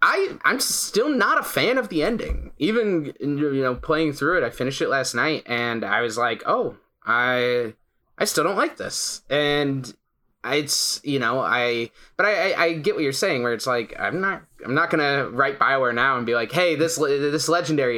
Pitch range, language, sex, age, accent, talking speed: 125-190 Hz, English, male, 20-39, American, 205 wpm